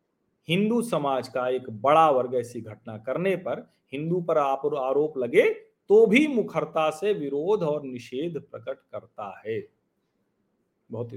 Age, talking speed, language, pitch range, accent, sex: 40-59, 140 wpm, Hindi, 120-155 Hz, native, male